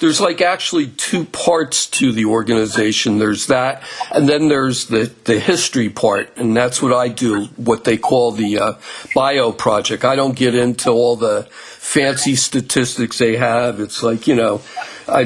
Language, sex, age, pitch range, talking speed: English, male, 50-69, 120-170 Hz, 175 wpm